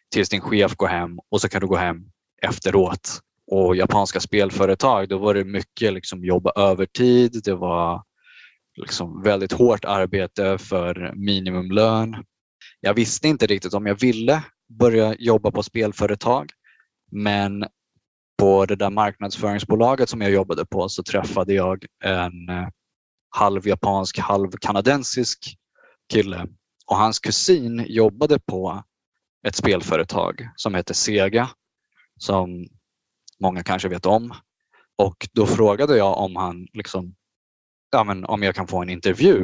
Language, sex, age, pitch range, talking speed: Swedish, male, 20-39, 95-110 Hz, 125 wpm